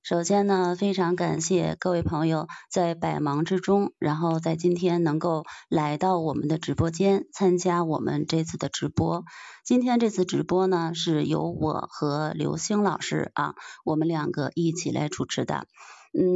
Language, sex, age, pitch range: Chinese, female, 20-39, 165-195 Hz